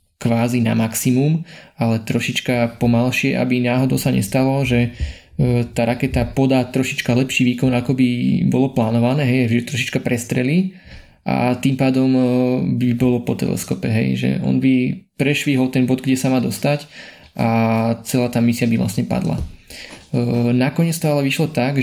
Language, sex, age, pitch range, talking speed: Slovak, male, 20-39, 120-140 Hz, 150 wpm